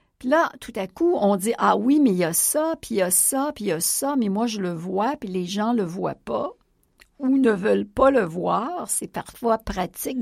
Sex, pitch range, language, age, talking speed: female, 185-255 Hz, English, 60-79, 265 wpm